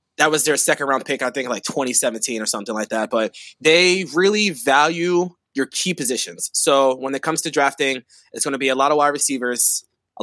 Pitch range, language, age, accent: 120-145 Hz, English, 20-39, American